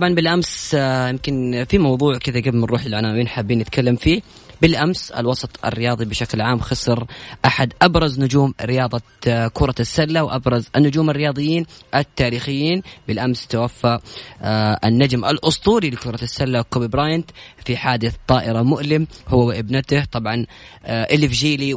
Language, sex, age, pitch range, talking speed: Arabic, female, 20-39, 120-150 Hz, 125 wpm